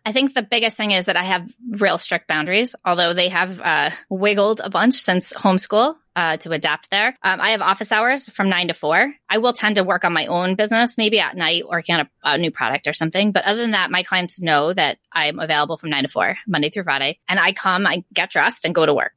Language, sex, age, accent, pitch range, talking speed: English, female, 20-39, American, 180-220 Hz, 255 wpm